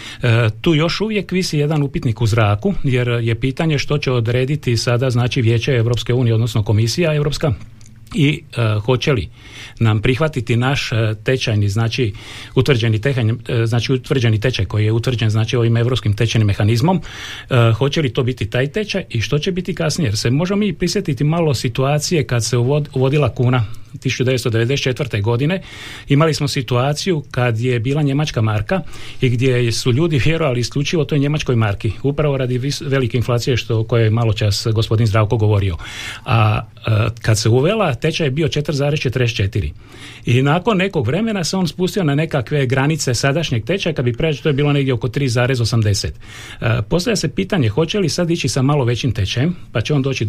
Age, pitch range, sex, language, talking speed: 40-59, 115-150 Hz, male, Croatian, 170 wpm